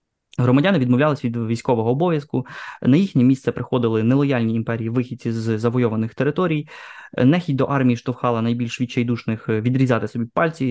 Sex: male